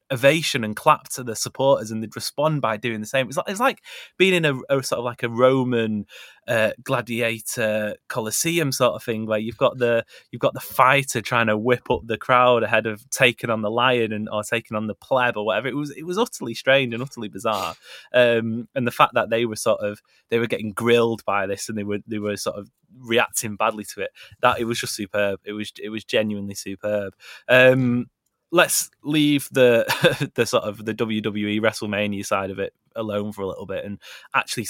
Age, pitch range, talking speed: 20-39, 105-125 Hz, 220 wpm